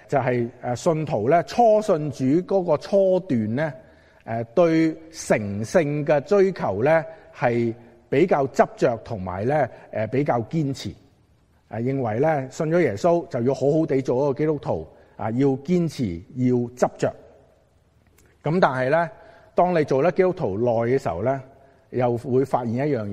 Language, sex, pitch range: Chinese, male, 110-150 Hz